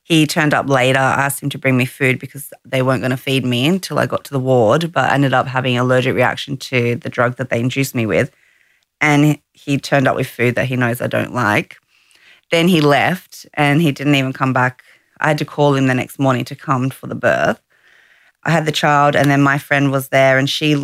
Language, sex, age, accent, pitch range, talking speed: English, female, 30-49, Australian, 130-145 Hz, 245 wpm